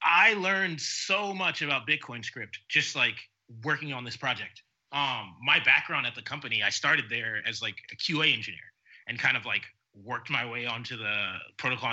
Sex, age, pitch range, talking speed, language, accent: male, 20-39, 120-155 Hz, 185 wpm, English, American